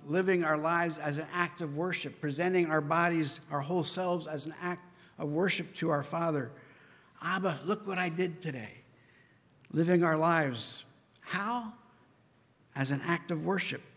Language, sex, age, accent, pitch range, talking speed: English, male, 60-79, American, 150-180 Hz, 160 wpm